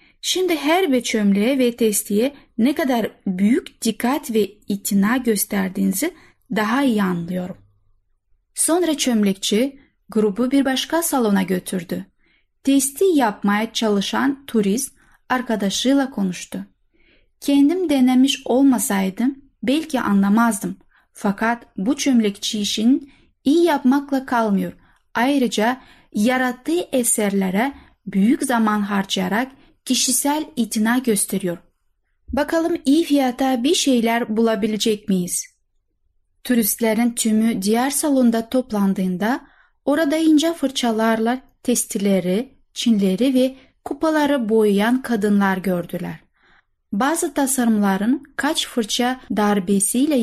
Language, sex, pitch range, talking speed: Turkish, female, 205-275 Hz, 90 wpm